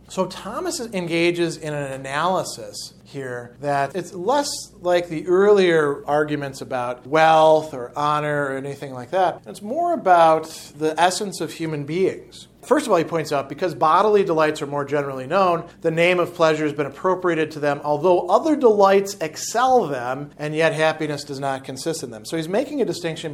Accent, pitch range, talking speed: American, 145-180 Hz, 180 wpm